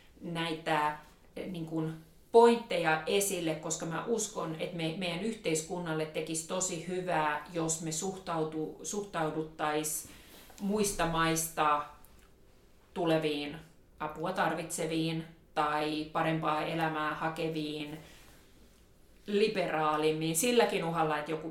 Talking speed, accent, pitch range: 90 wpm, native, 155-175 Hz